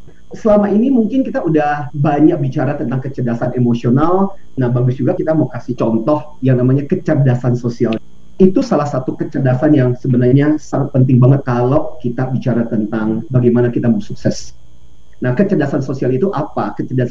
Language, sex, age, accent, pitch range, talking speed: Indonesian, male, 40-59, native, 120-150 Hz, 155 wpm